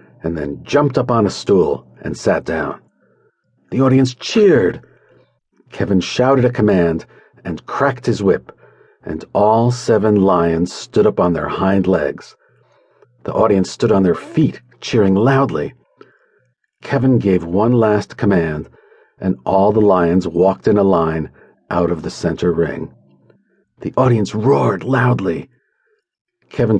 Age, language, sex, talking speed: 50-69, English, male, 140 wpm